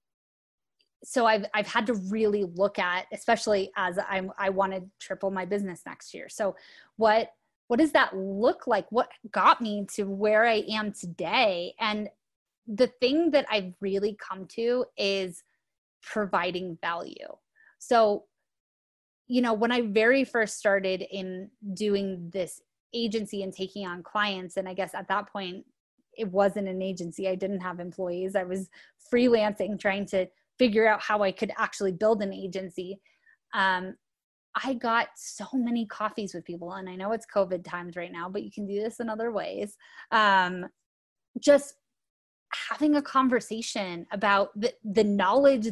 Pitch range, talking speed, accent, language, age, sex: 190-230 Hz, 160 wpm, American, English, 20-39, female